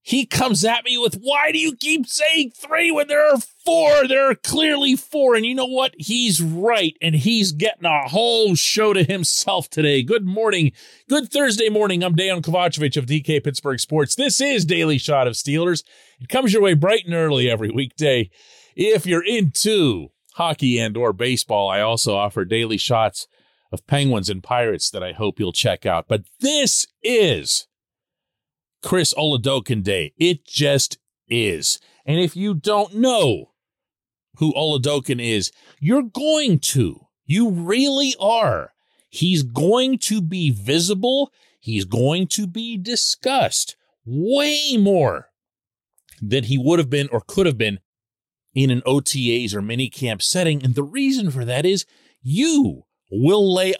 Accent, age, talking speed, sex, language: American, 40-59, 160 wpm, male, English